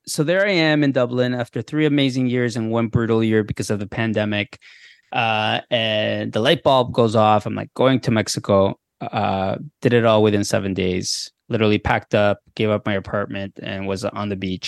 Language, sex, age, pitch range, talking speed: English, male, 20-39, 105-130 Hz, 200 wpm